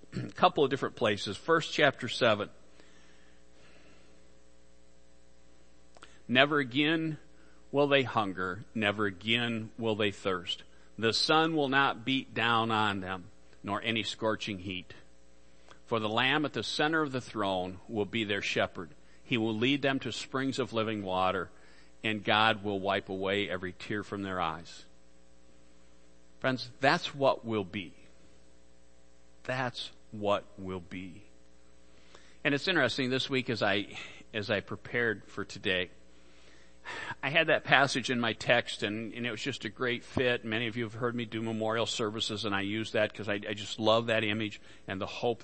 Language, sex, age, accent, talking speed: English, male, 50-69, American, 160 wpm